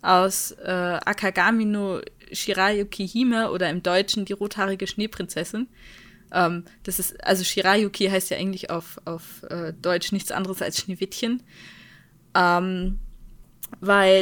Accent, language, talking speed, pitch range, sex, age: German, German, 120 wpm, 190-235 Hz, female, 20-39